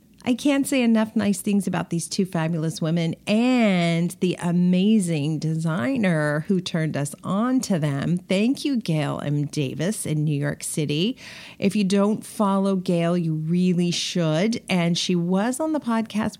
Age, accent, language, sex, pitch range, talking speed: 40-59, American, English, female, 170-215 Hz, 160 wpm